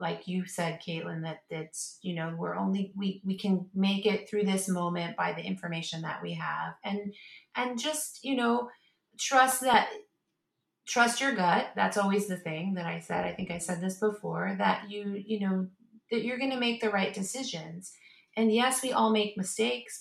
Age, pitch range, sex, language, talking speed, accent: 30-49, 175-210 Hz, female, English, 195 wpm, American